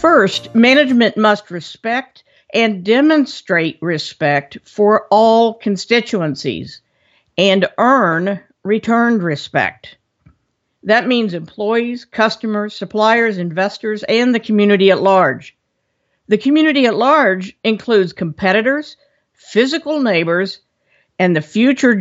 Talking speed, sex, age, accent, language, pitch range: 100 wpm, female, 50-69, American, English, 175-230 Hz